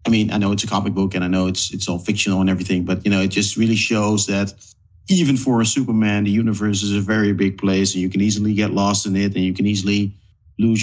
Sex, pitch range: male, 95-105 Hz